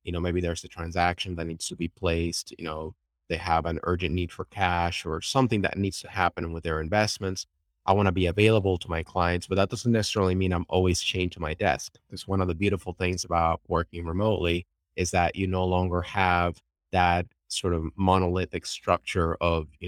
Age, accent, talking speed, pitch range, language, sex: 30-49, American, 210 wpm, 85-95 Hz, English, male